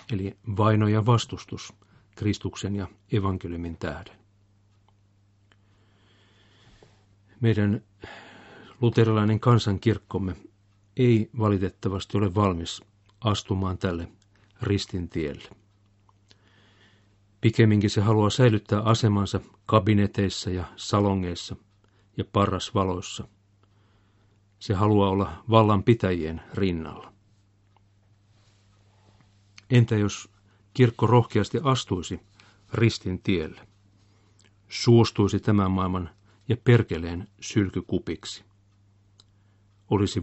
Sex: male